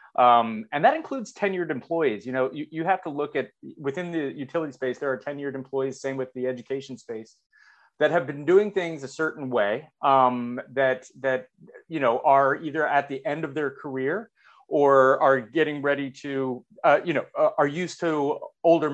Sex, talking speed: male, 195 wpm